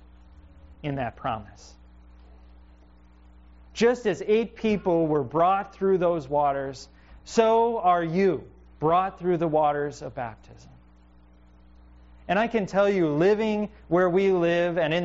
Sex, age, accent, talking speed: male, 30-49, American, 130 wpm